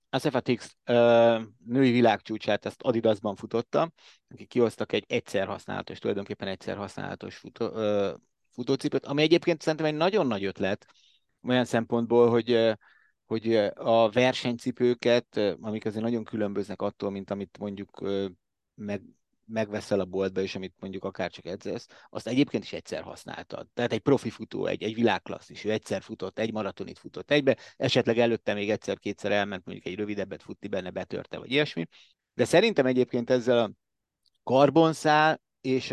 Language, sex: Hungarian, male